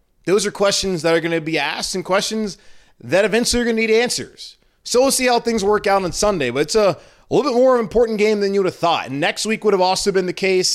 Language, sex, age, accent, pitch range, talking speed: English, male, 30-49, American, 130-190 Hz, 275 wpm